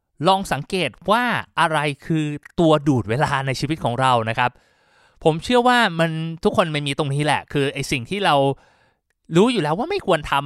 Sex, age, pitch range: male, 20-39, 125-170 Hz